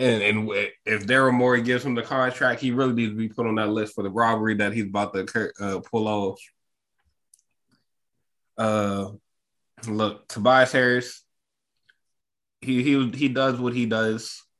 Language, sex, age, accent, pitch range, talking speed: English, male, 20-39, American, 110-130 Hz, 165 wpm